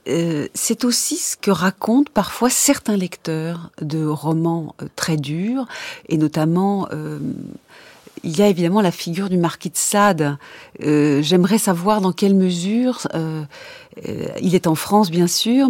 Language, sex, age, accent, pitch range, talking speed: French, female, 40-59, French, 155-205 Hz, 155 wpm